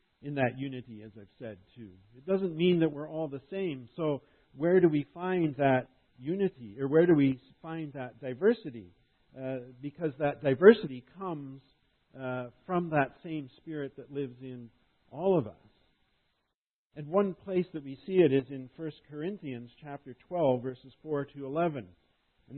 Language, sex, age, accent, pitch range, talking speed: English, male, 50-69, American, 120-150 Hz, 165 wpm